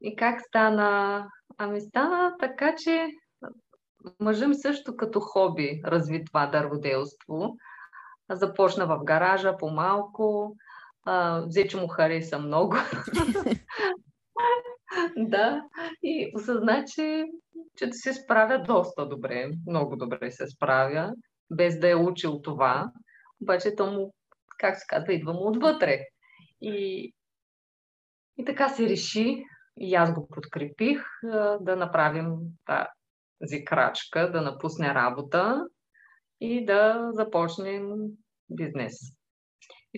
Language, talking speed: Bulgarian, 110 wpm